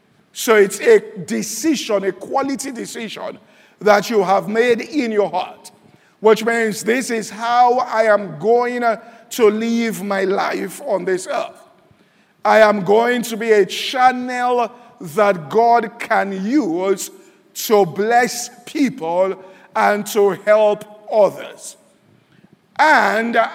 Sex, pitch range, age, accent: male, 205-240 Hz, 50-69, Nigerian